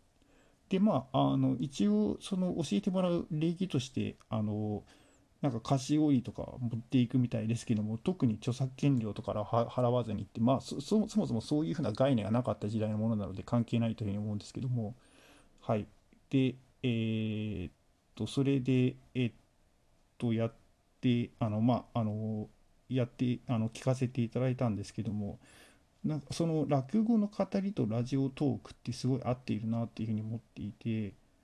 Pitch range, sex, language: 110-140 Hz, male, Japanese